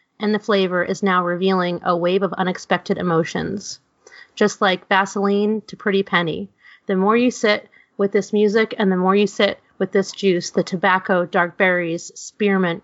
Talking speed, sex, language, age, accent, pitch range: 175 wpm, female, English, 30-49, American, 180-210 Hz